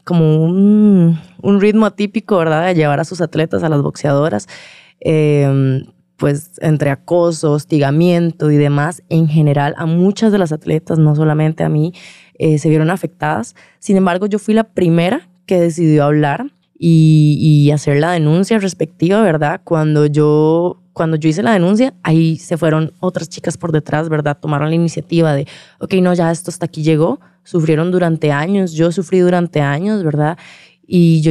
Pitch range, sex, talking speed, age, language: 155-180 Hz, female, 170 wpm, 20-39, Spanish